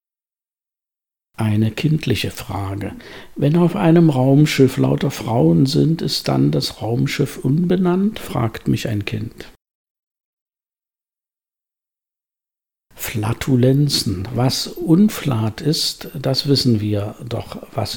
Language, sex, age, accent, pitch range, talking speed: German, male, 60-79, German, 110-140 Hz, 95 wpm